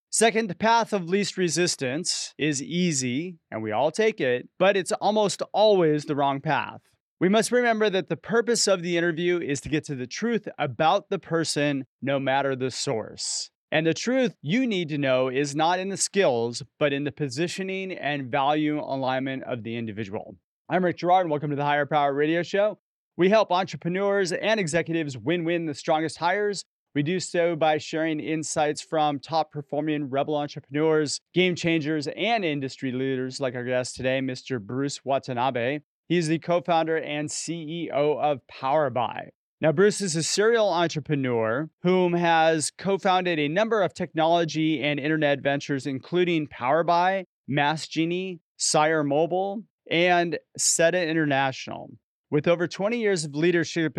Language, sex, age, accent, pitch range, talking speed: English, male, 30-49, American, 145-180 Hz, 160 wpm